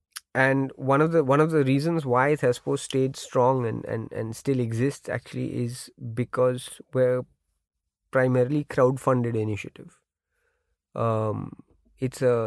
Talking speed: 130 wpm